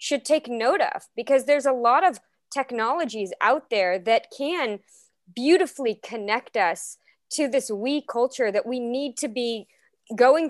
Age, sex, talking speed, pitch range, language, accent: 20-39, female, 155 wpm, 205-265 Hz, English, American